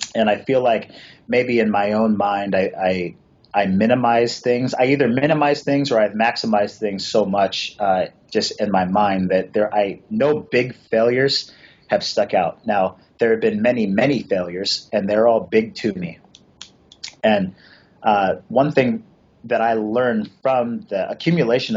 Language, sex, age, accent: English, male, 30-49, American